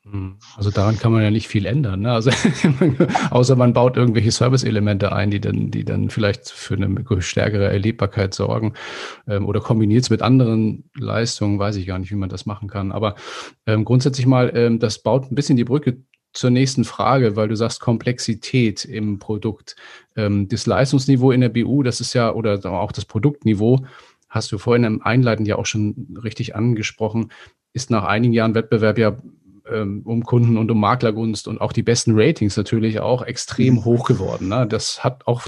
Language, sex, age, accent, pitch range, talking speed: German, male, 40-59, German, 105-125 Hz, 185 wpm